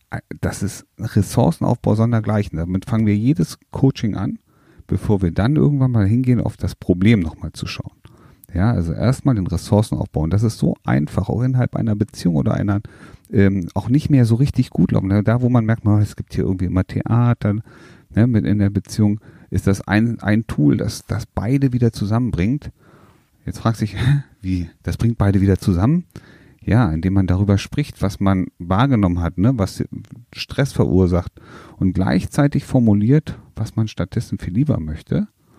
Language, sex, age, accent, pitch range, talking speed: German, male, 40-59, German, 95-120 Hz, 175 wpm